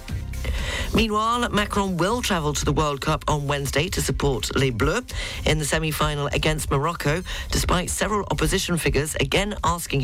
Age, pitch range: 40-59, 130-165 Hz